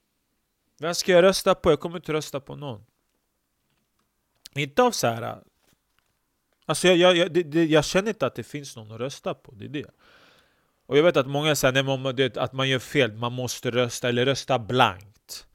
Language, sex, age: Swedish, male, 30-49